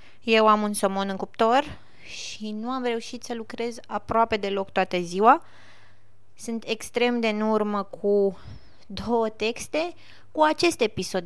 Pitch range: 155-225 Hz